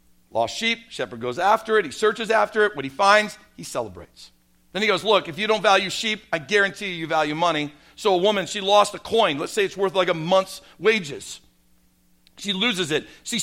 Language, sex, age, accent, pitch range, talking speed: English, male, 50-69, American, 180-230 Hz, 215 wpm